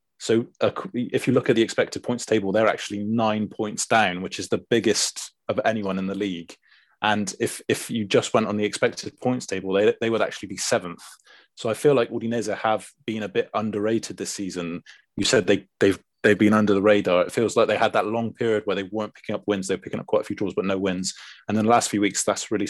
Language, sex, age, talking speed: English, male, 20-39, 250 wpm